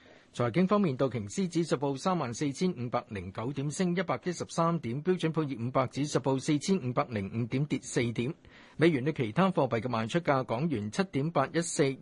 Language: Chinese